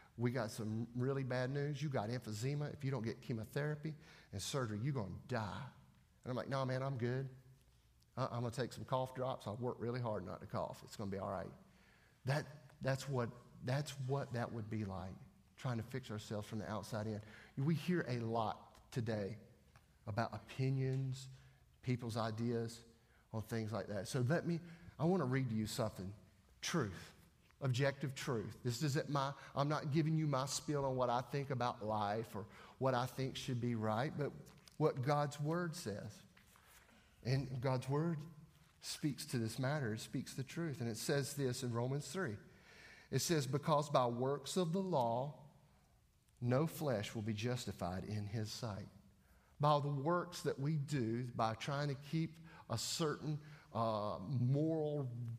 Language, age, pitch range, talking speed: English, 40-59, 110-145 Hz, 180 wpm